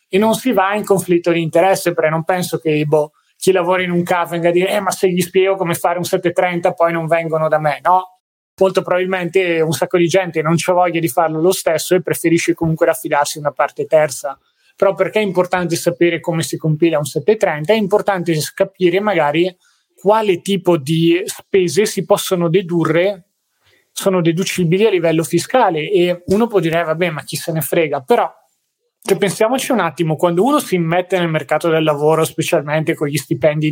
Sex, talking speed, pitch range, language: male, 195 wpm, 160-185 Hz, Italian